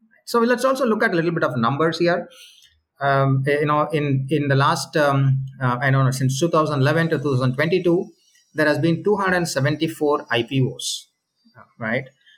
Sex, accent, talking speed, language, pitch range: male, Indian, 185 wpm, English, 135-180 Hz